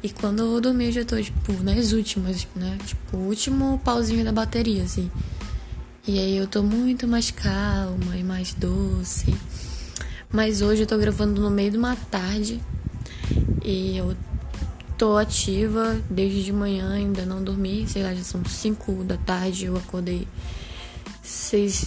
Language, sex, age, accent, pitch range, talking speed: Portuguese, female, 10-29, Brazilian, 180-230 Hz, 160 wpm